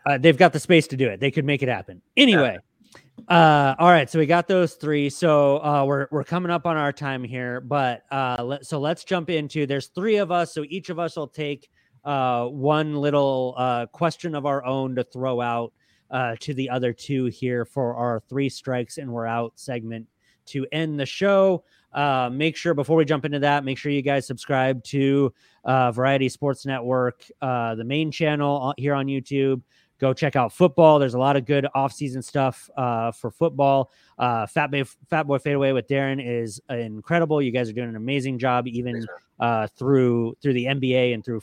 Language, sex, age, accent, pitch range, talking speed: English, male, 30-49, American, 125-150 Hz, 210 wpm